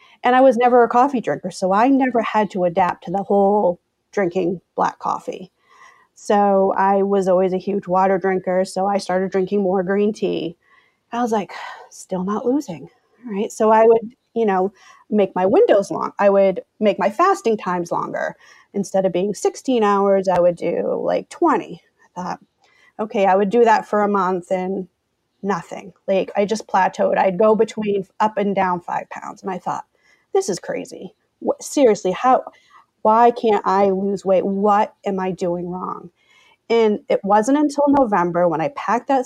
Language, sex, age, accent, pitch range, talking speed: English, female, 30-49, American, 190-235 Hz, 180 wpm